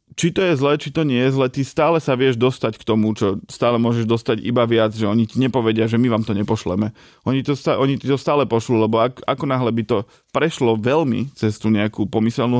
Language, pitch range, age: Slovak, 110-125 Hz, 20-39